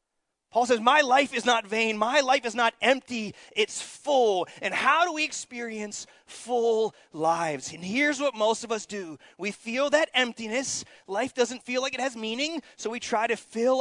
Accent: American